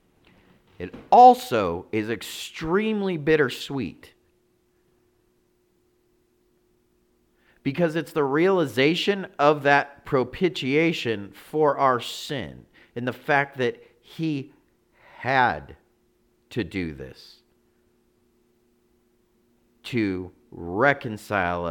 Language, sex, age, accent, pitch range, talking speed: English, male, 40-59, American, 115-140 Hz, 70 wpm